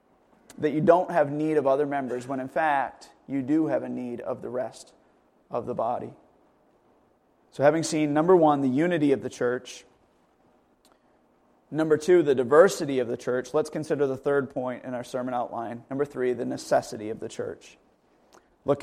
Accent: American